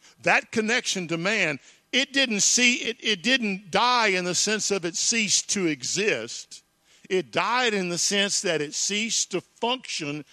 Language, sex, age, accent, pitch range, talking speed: English, male, 50-69, American, 145-190 Hz, 170 wpm